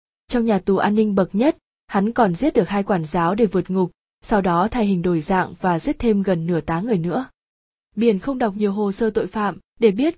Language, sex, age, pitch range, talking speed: Vietnamese, female, 20-39, 190-230 Hz, 240 wpm